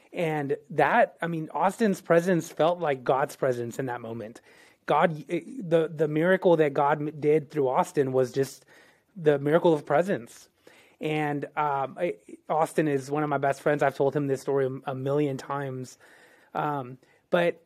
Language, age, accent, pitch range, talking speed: English, 20-39, American, 140-170 Hz, 160 wpm